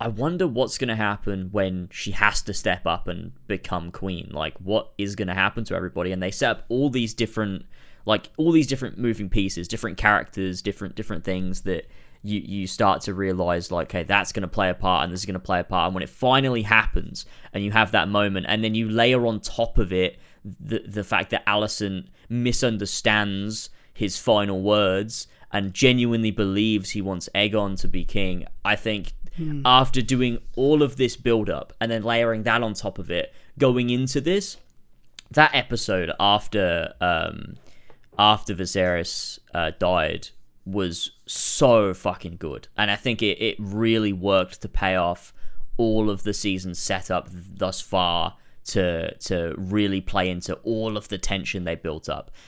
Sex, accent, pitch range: male, British, 95-115 Hz